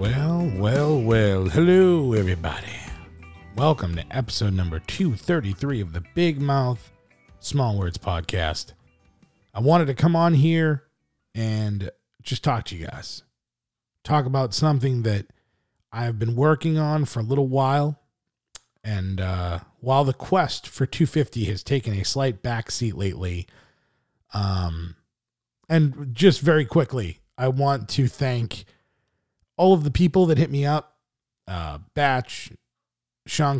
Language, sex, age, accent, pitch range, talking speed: English, male, 40-59, American, 100-145 Hz, 130 wpm